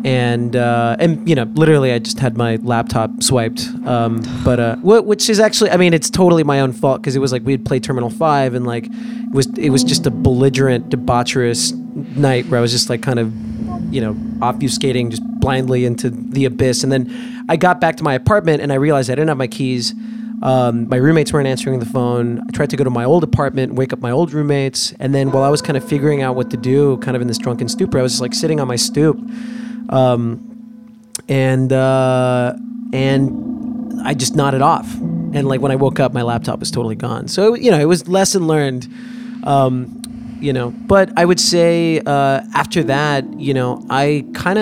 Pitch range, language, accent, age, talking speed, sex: 125-175 Hz, English, American, 20-39, 220 wpm, male